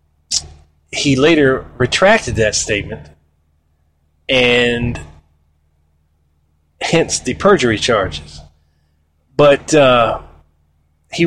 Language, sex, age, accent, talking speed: English, male, 30-49, American, 70 wpm